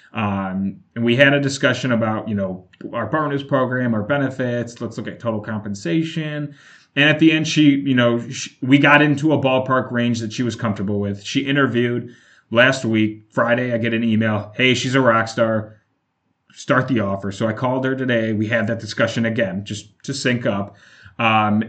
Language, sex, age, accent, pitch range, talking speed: English, male, 30-49, American, 110-140 Hz, 195 wpm